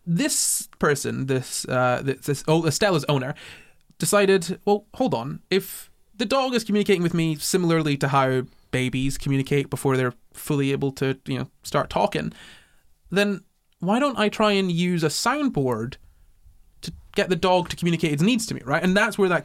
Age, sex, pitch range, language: 20-39, male, 135-180 Hz, English